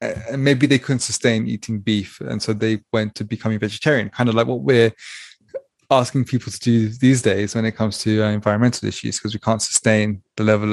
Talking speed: 215 wpm